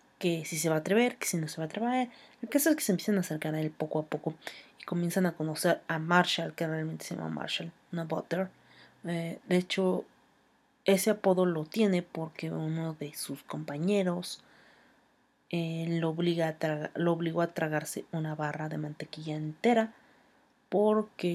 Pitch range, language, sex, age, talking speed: 160-215 Hz, Spanish, female, 30-49, 175 wpm